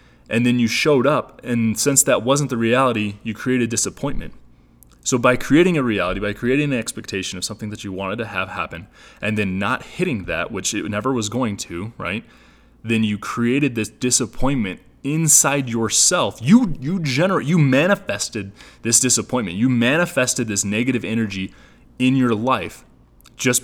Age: 20-39